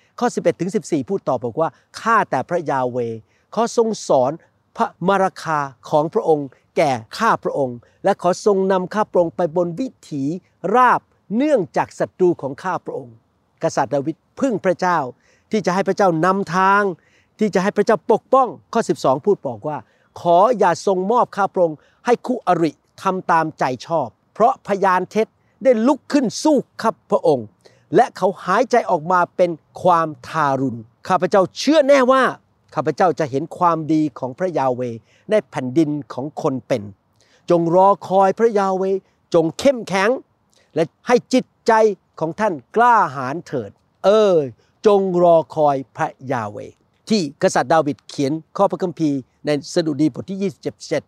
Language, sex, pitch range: Thai, male, 145-200 Hz